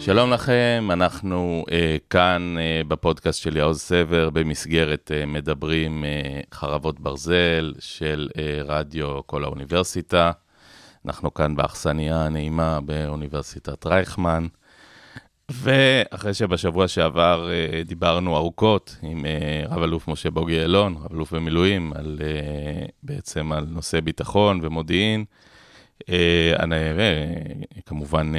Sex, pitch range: male, 75-90 Hz